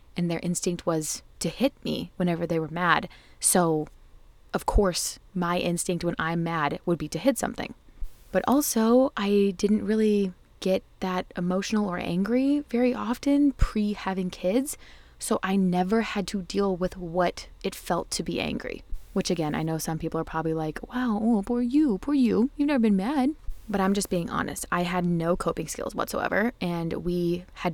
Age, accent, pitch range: 20-39, American, 175-215 Hz